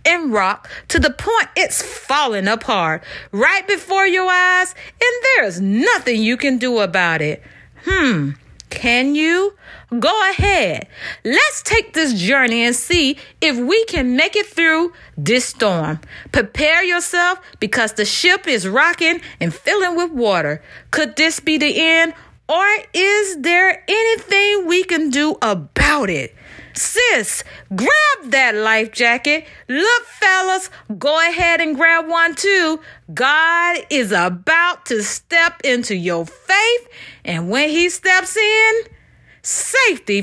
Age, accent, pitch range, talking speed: 40-59, American, 215-360 Hz, 135 wpm